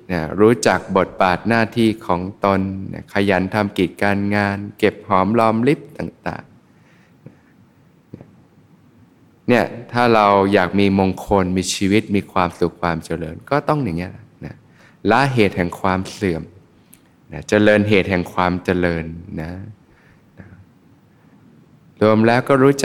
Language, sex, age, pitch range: Thai, male, 20-39, 95-110 Hz